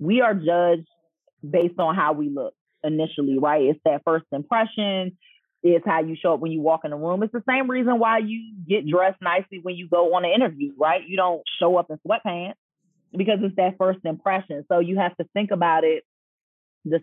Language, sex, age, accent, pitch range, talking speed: English, female, 30-49, American, 155-180 Hz, 210 wpm